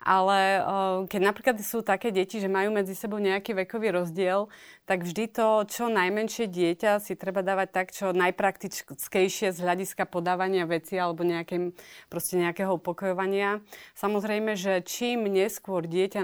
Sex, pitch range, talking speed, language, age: female, 180-205 Hz, 140 wpm, Slovak, 30-49